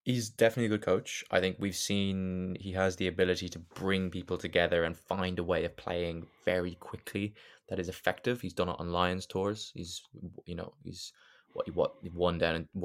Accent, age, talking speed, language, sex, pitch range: British, 20-39, 200 wpm, English, male, 80-95 Hz